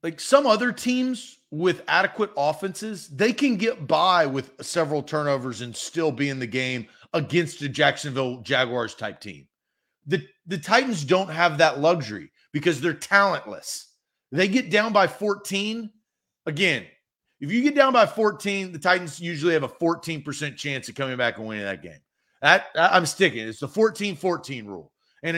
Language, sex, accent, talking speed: English, male, American, 165 wpm